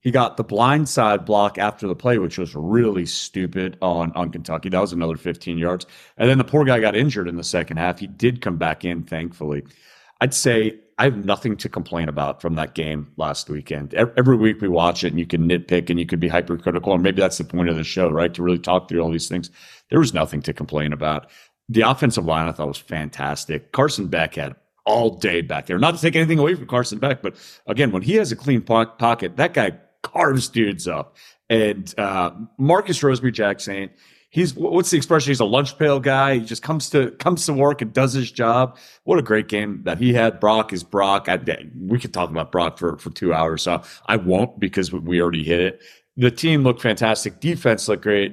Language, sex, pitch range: English, male, 85-120 Hz